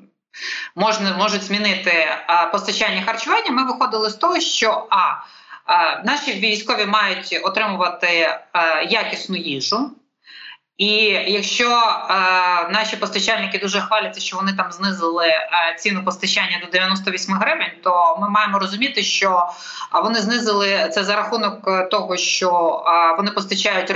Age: 20-39